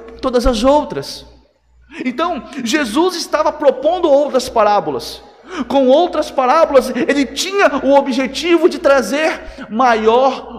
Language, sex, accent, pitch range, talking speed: Portuguese, male, Brazilian, 225-295 Hz, 110 wpm